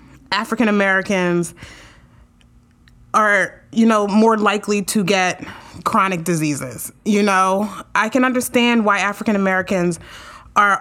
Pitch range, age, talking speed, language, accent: 180-220 Hz, 30-49, 110 wpm, English, American